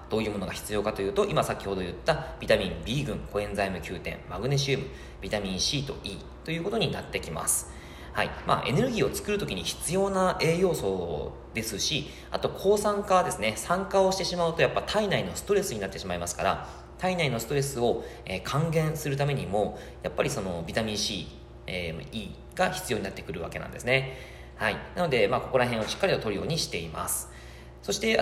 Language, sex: Japanese, male